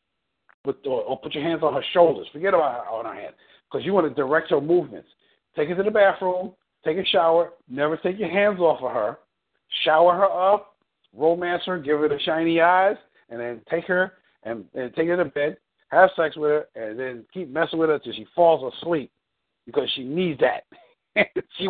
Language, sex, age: English, male, 50-69